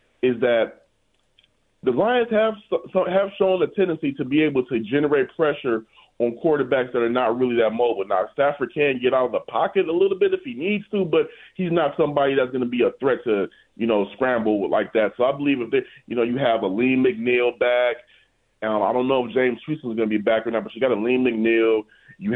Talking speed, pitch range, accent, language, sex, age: 240 wpm, 115-155 Hz, American, English, male, 30-49